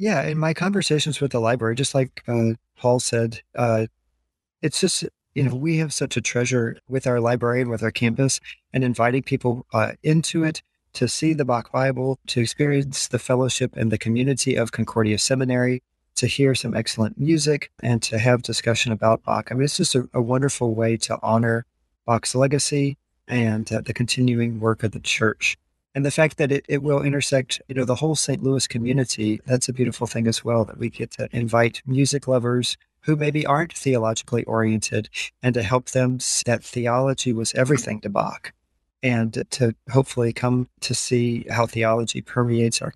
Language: English